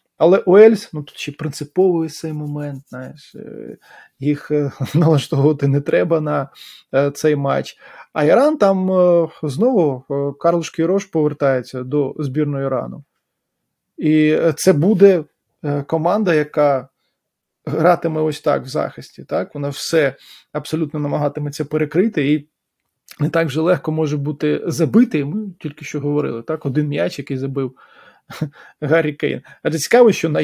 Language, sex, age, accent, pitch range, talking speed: Ukrainian, male, 20-39, native, 145-170 Hz, 130 wpm